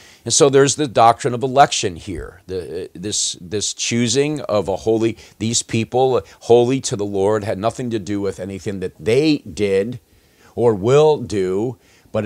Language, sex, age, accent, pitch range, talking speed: English, male, 50-69, American, 95-120 Hz, 165 wpm